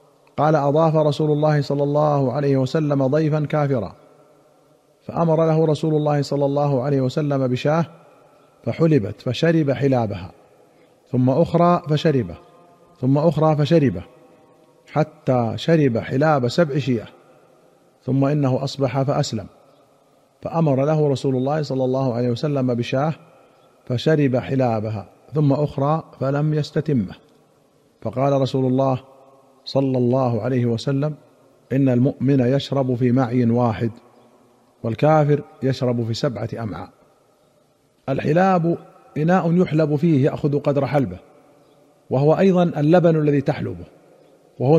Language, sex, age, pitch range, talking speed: Arabic, male, 50-69, 130-155 Hz, 110 wpm